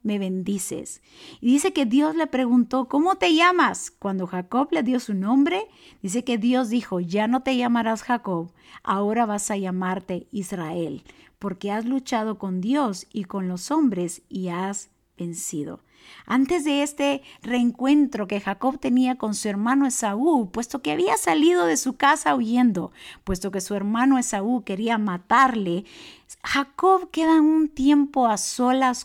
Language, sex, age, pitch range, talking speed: Spanish, female, 50-69, 195-255 Hz, 155 wpm